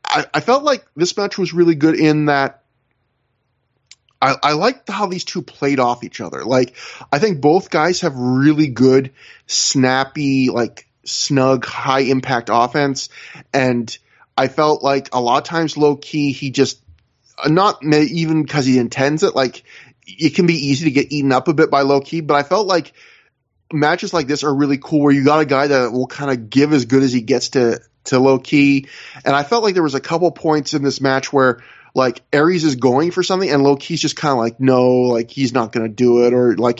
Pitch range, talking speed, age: 130-155 Hz, 205 wpm, 20-39